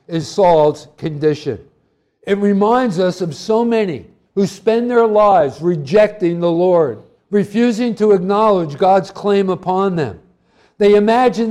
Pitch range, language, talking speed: 175-220 Hz, English, 130 wpm